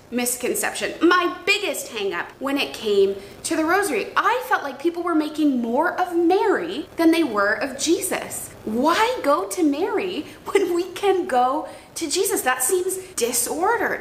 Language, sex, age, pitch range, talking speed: English, female, 20-39, 210-345 Hz, 165 wpm